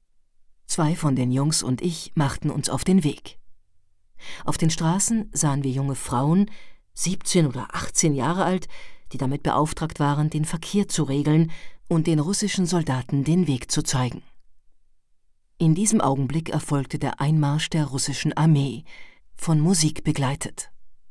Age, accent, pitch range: 50-69, German, 135-175 Hz